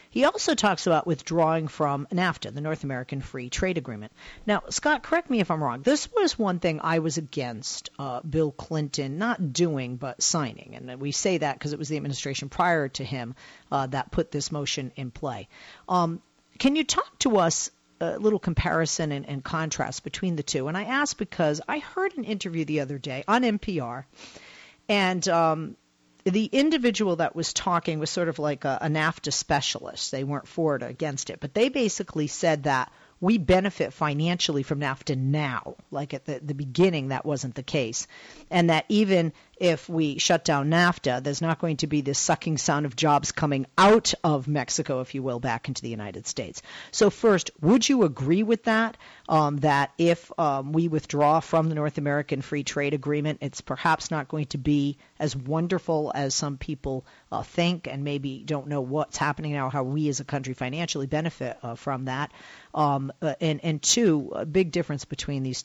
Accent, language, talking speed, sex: American, English, 195 wpm, female